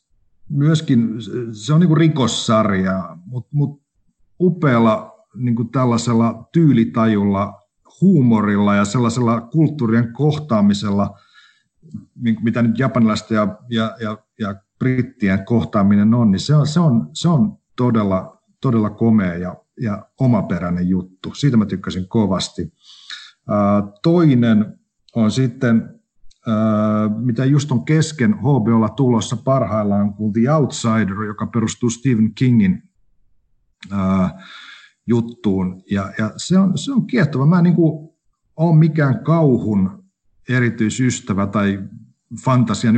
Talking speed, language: 115 wpm, Finnish